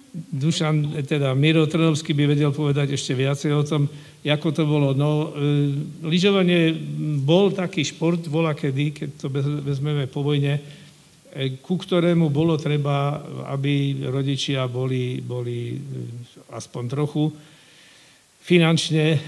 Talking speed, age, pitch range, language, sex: 130 wpm, 50-69, 135-155 Hz, Slovak, male